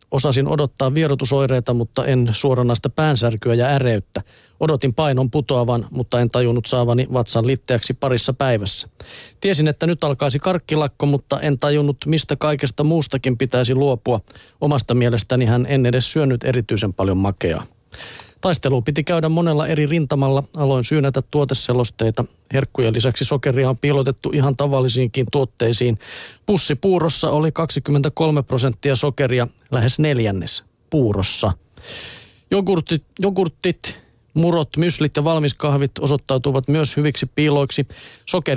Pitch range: 125-150 Hz